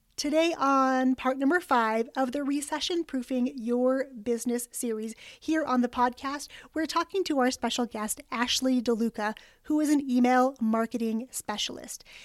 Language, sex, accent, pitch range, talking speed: English, female, American, 235-290 Hz, 145 wpm